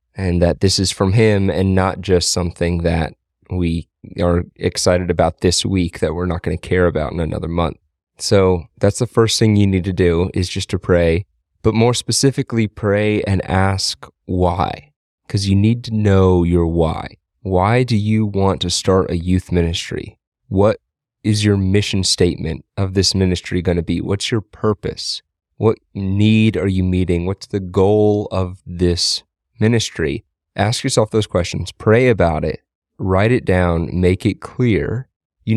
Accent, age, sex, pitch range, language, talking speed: American, 30-49, male, 90-105 Hz, English, 170 wpm